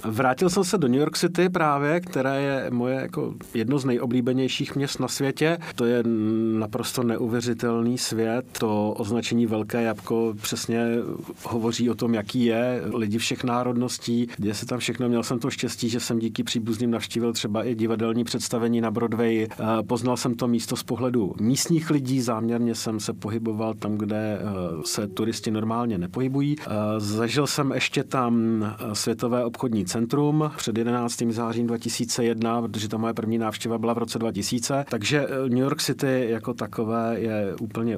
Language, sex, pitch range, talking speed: Czech, male, 115-130 Hz, 160 wpm